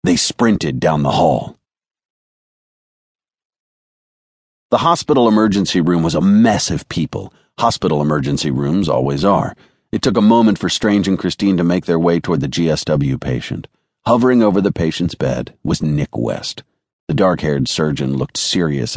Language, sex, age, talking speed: English, male, 40-59, 150 wpm